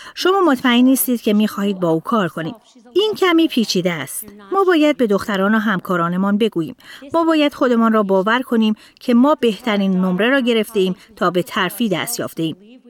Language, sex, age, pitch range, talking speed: Persian, female, 30-49, 185-250 Hz, 170 wpm